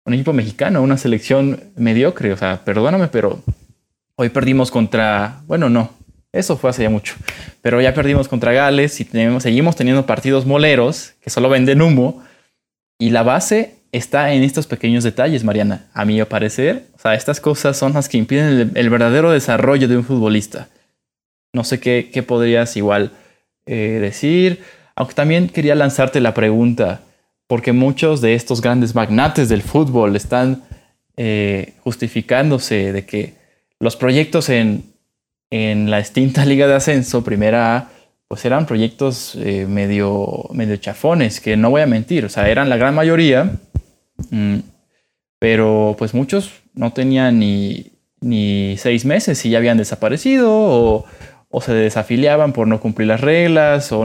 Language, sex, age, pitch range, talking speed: Spanish, male, 20-39, 110-140 Hz, 155 wpm